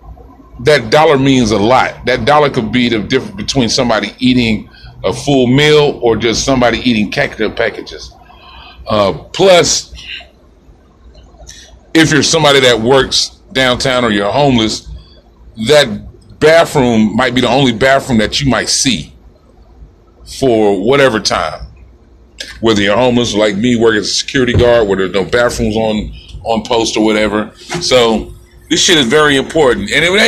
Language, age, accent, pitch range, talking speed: English, 40-59, American, 95-125 Hz, 150 wpm